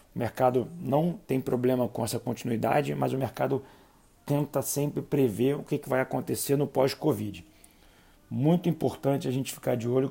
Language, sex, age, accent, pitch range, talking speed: Portuguese, male, 40-59, Brazilian, 120-140 Hz, 160 wpm